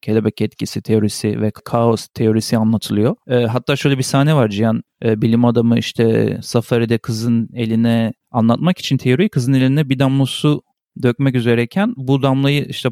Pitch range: 110-125 Hz